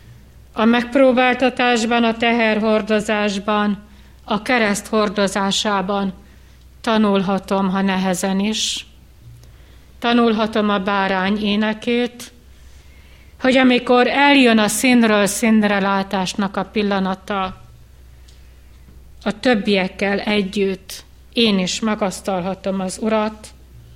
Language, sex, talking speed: Hungarian, female, 80 wpm